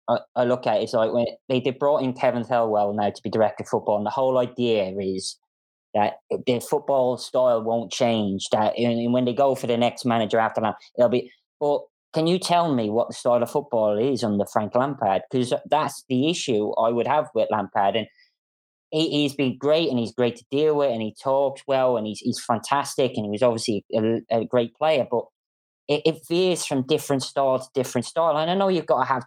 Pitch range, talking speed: 115-140 Hz, 220 wpm